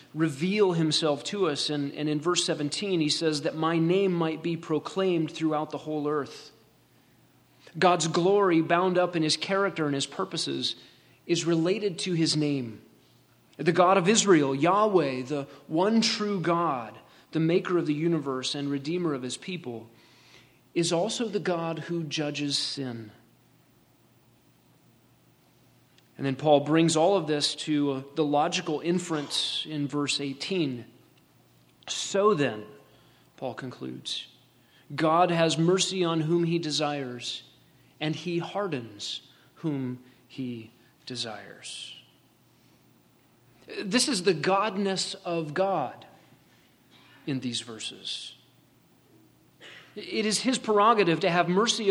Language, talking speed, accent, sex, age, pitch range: English, 125 wpm, American, male, 30-49, 140-180 Hz